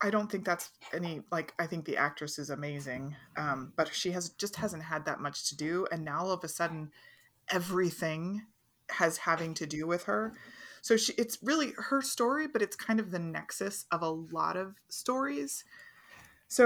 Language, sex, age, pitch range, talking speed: English, female, 20-39, 155-205 Hz, 195 wpm